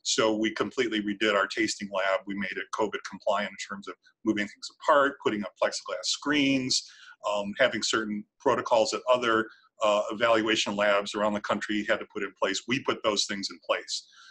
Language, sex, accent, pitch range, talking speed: English, male, American, 110-150 Hz, 190 wpm